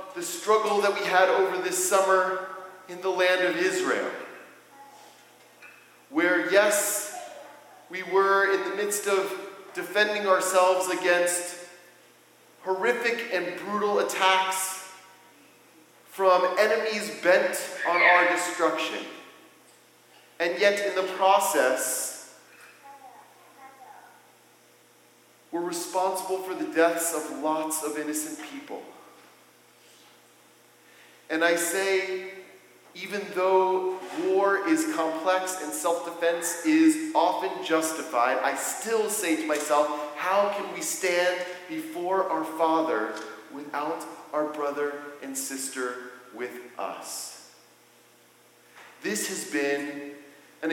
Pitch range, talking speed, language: 160-195 Hz, 100 wpm, English